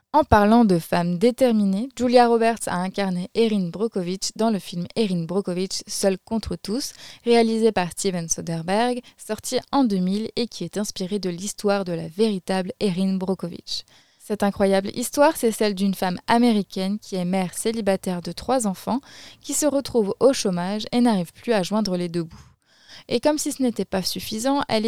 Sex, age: female, 20-39